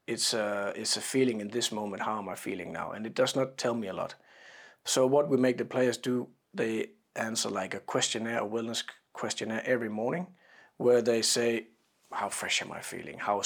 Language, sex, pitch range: Czech, male, 110-135 Hz